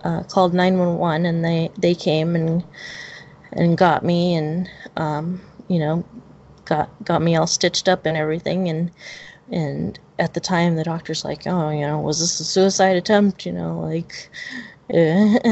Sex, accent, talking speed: female, American, 165 wpm